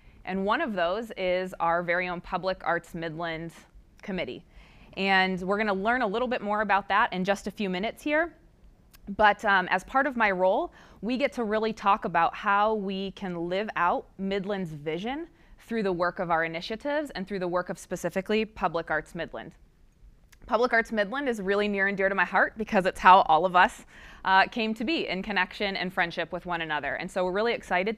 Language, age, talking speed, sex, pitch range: English, 20-39, 210 wpm, female, 180-225 Hz